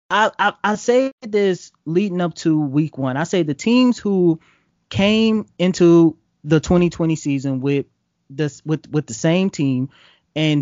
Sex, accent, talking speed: male, American, 160 wpm